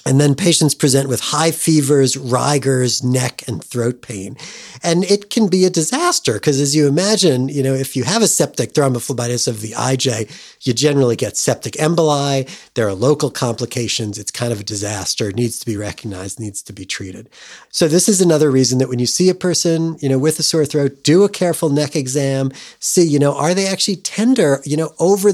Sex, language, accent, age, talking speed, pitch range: male, English, American, 40-59, 210 wpm, 120-165 Hz